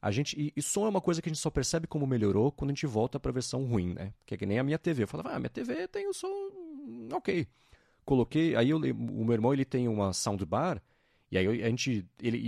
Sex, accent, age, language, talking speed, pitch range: male, Brazilian, 40-59, Portuguese, 255 wpm, 110-165 Hz